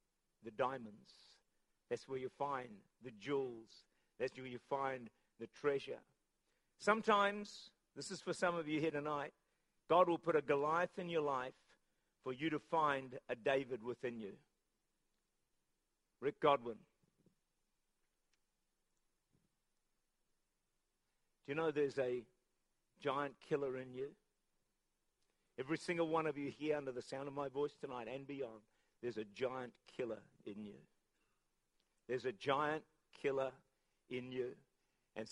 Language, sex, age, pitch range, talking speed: English, male, 50-69, 130-160 Hz, 135 wpm